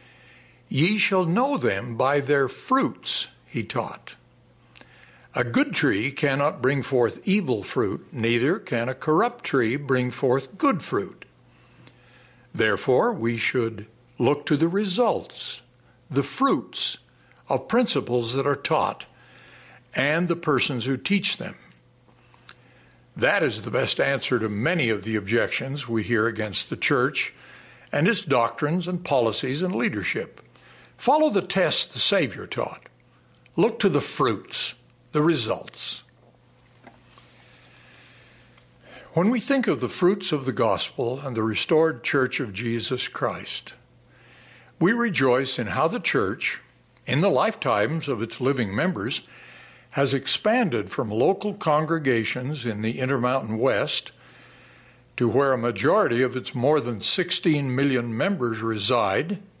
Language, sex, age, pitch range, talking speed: English, male, 60-79, 120-165 Hz, 130 wpm